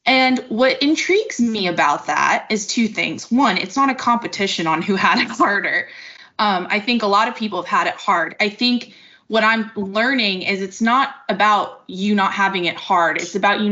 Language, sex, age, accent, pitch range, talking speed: English, female, 20-39, American, 180-225 Hz, 205 wpm